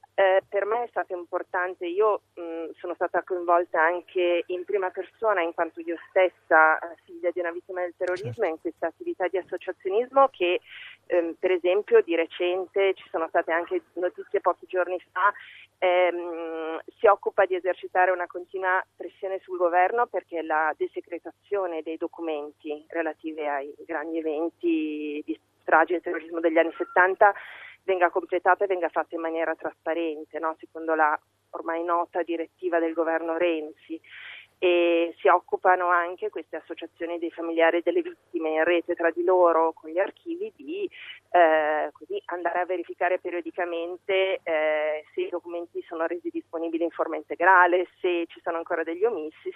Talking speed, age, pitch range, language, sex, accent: 155 wpm, 30-49, 165-185 Hz, Italian, female, native